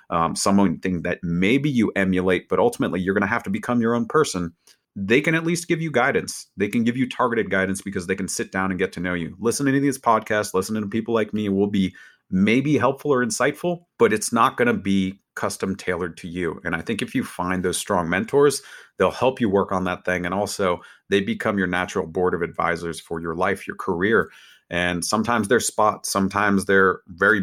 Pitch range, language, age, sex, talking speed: 90-115 Hz, English, 30-49, male, 225 wpm